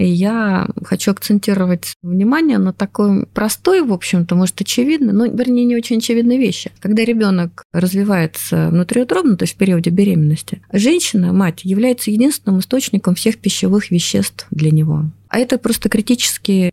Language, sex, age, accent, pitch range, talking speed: Russian, female, 30-49, native, 170-215 Hz, 145 wpm